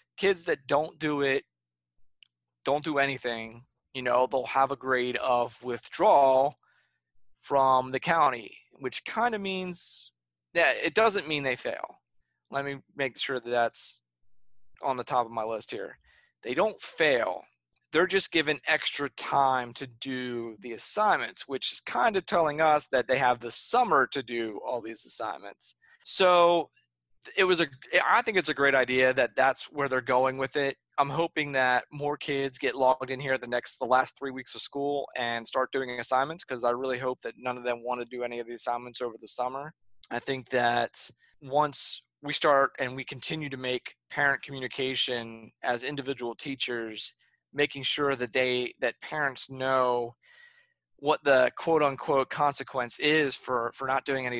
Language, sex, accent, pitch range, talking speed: English, male, American, 120-145 Hz, 175 wpm